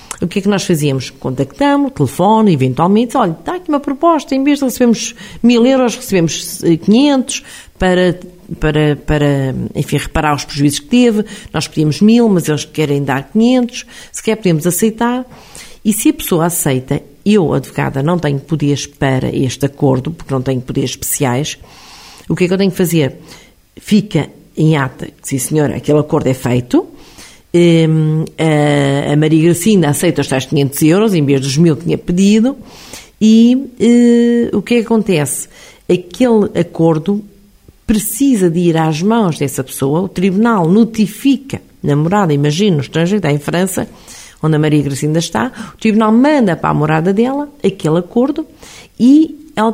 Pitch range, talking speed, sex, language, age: 145-220 Hz, 165 wpm, female, Portuguese, 50-69